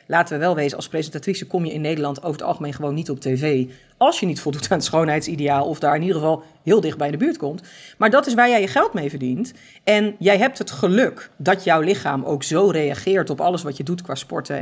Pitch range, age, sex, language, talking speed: 145-195 Hz, 40-59, female, Dutch, 255 wpm